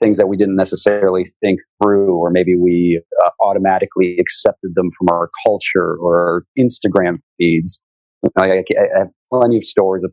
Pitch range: 85-95 Hz